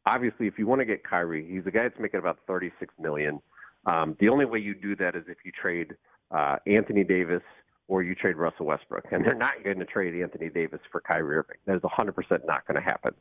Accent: American